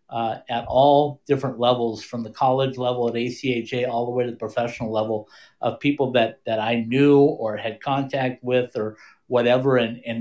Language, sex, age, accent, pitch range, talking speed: English, male, 50-69, American, 120-140 Hz, 190 wpm